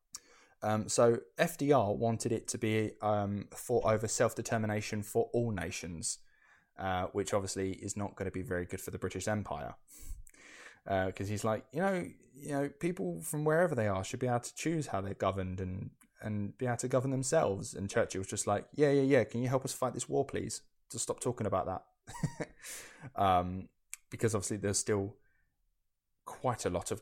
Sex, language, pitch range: male, English, 95-130 Hz